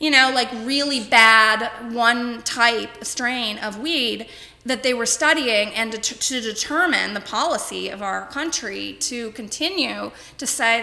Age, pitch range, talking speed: 20-39, 205-260 Hz, 145 wpm